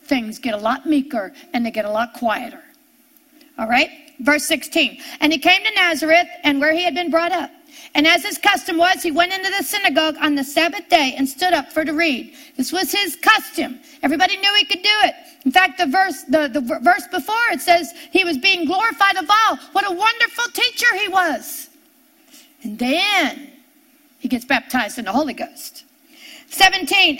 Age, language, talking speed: 50-69, English, 190 wpm